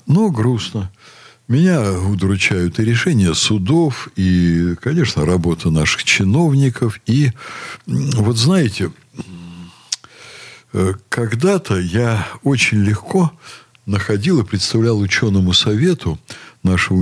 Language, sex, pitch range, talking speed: Russian, male, 95-140 Hz, 90 wpm